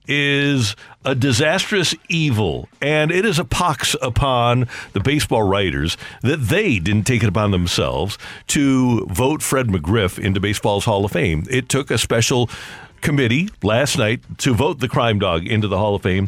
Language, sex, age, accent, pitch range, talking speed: English, male, 50-69, American, 110-145 Hz, 170 wpm